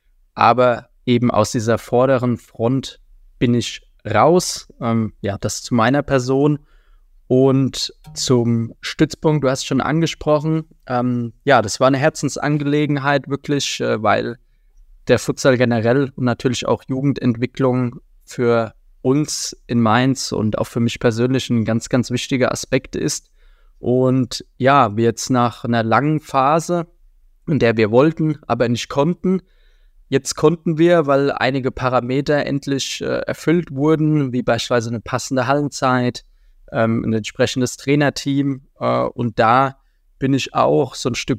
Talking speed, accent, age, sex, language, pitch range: 140 wpm, German, 20-39, male, German, 120-140 Hz